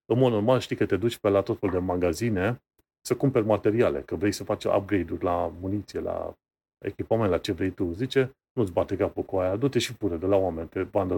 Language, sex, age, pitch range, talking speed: Romanian, male, 30-49, 100-120 Hz, 230 wpm